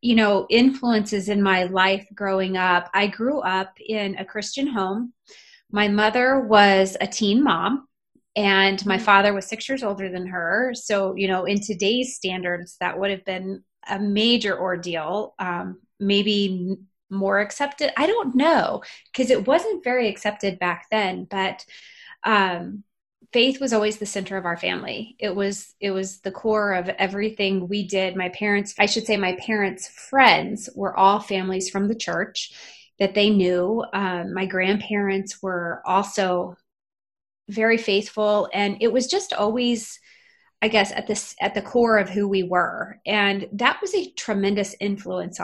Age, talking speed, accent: 20-39, 160 wpm, American